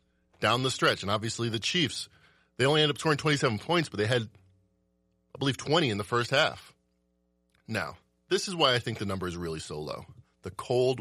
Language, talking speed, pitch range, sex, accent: English, 205 wpm, 95-140 Hz, male, American